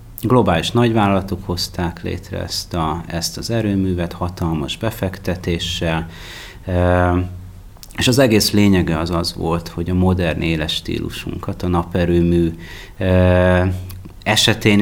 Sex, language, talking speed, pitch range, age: male, Hungarian, 110 wpm, 85-105 Hz, 30-49